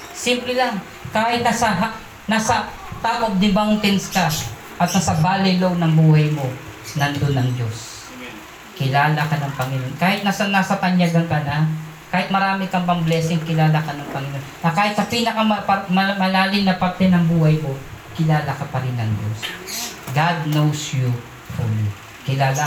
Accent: native